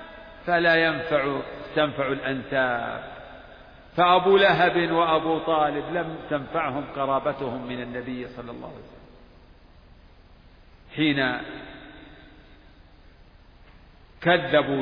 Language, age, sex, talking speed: Arabic, 50-69, male, 75 wpm